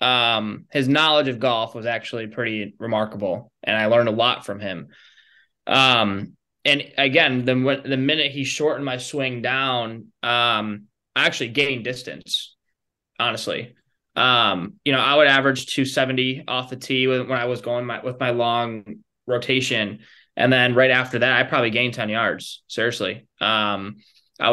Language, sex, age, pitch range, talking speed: English, male, 20-39, 115-130 Hz, 160 wpm